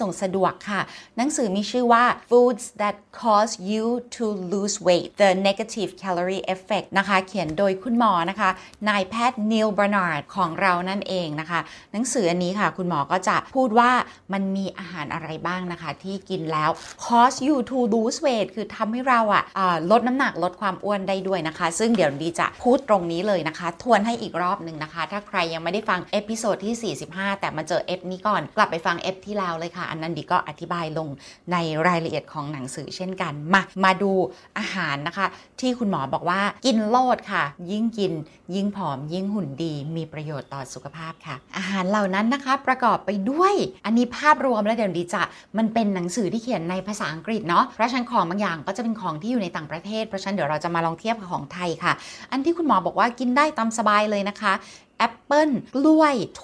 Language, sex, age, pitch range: Thai, female, 30-49, 175-225 Hz